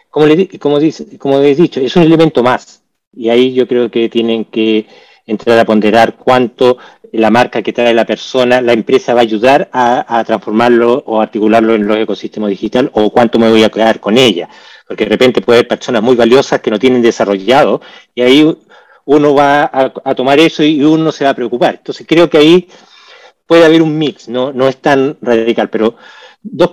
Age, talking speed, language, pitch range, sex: 40-59, 200 wpm, Spanish, 110-140 Hz, male